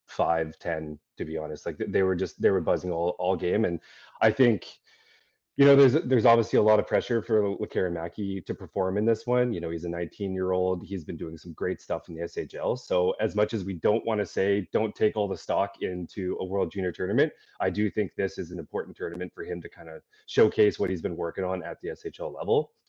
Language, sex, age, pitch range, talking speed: English, male, 30-49, 90-120 Hz, 245 wpm